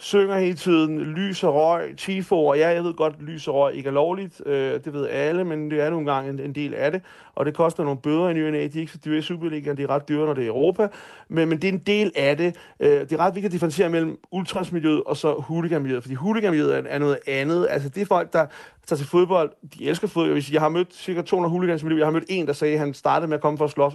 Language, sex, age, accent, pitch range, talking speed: Danish, male, 30-49, native, 145-170 Hz, 280 wpm